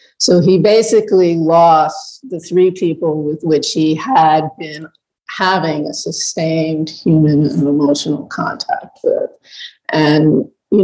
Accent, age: American, 50-69